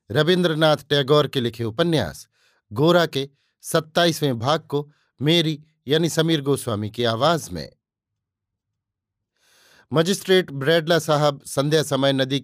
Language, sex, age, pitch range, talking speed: Hindi, male, 50-69, 130-165 Hz, 110 wpm